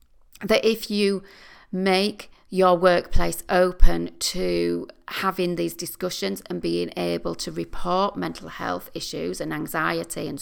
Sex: female